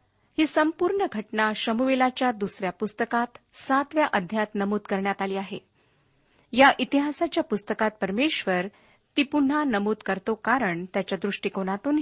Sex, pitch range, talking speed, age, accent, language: female, 195-260 Hz, 115 wpm, 40-59, native, Marathi